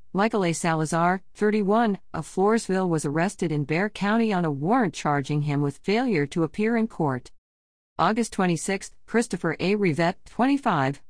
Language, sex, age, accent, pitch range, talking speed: English, female, 50-69, American, 150-205 Hz, 150 wpm